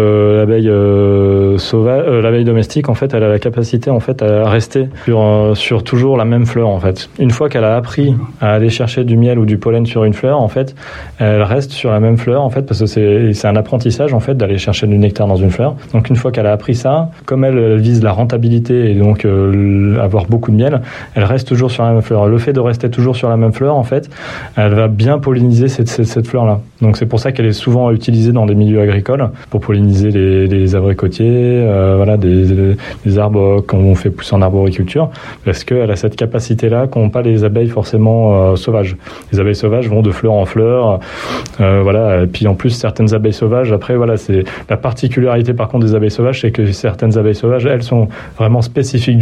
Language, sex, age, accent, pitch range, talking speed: French, male, 20-39, French, 105-120 Hz, 230 wpm